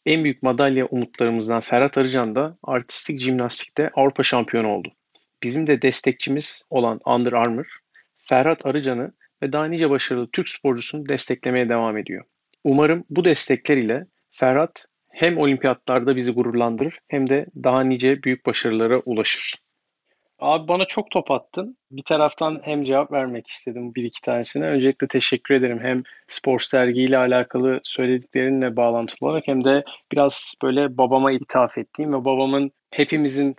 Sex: male